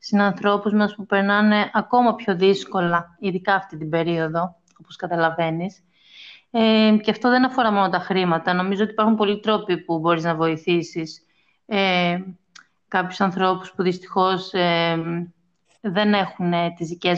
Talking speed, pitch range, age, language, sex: 140 wpm, 180-210 Hz, 30-49, Greek, female